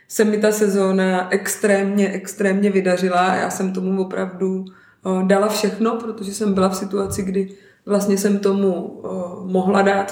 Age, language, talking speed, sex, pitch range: 20-39, Czech, 150 wpm, female, 185-205 Hz